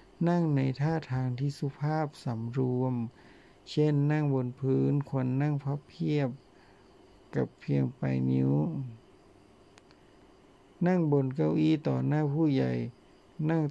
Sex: male